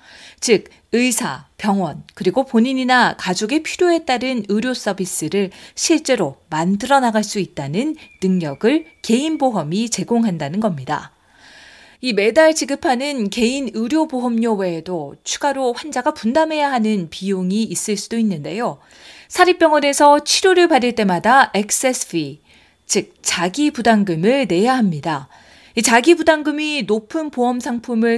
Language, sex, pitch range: Korean, female, 200-280 Hz